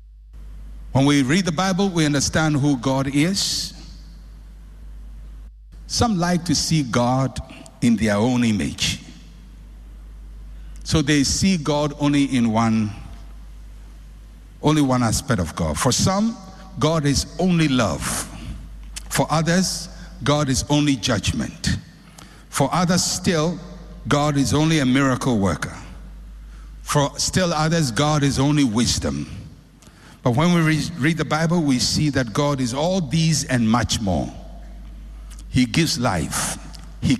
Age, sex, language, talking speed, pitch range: 60-79, male, English, 125 wpm, 115-165 Hz